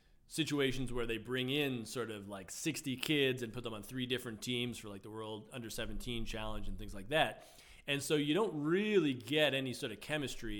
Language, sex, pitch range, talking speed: English, male, 110-140 Hz, 215 wpm